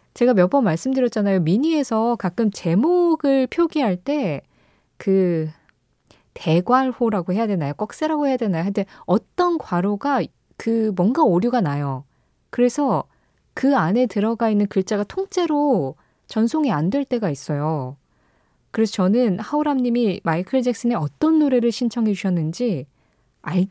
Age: 20-39